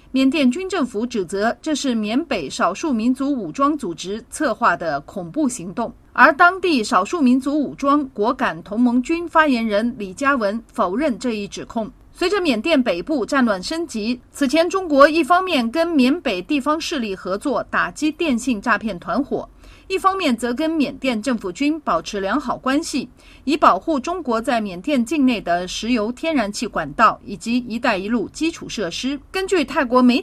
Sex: female